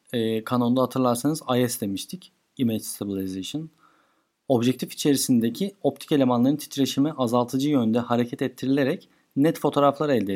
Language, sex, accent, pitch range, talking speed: Turkish, male, native, 115-145 Hz, 105 wpm